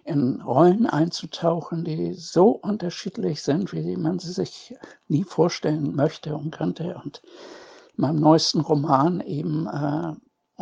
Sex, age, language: male, 60-79, German